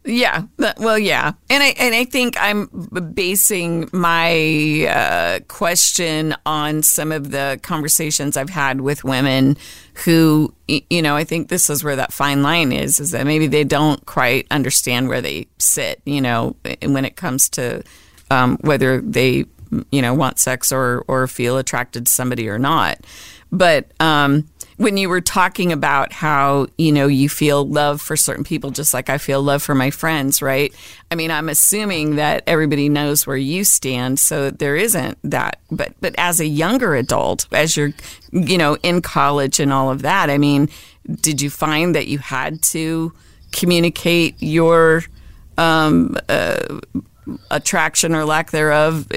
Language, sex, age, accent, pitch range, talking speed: English, female, 40-59, American, 140-165 Hz, 165 wpm